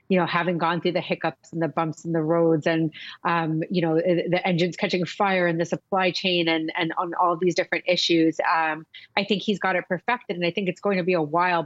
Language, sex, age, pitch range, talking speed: English, female, 30-49, 165-185 Hz, 245 wpm